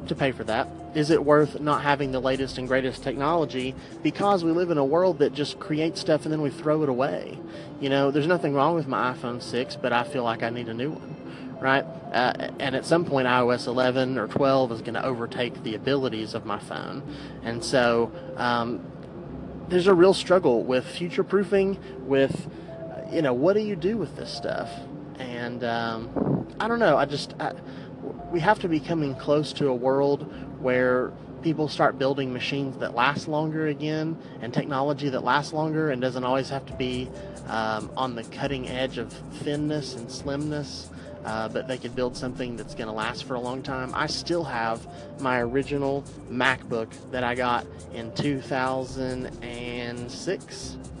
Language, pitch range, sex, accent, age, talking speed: English, 125-150 Hz, male, American, 30-49, 185 wpm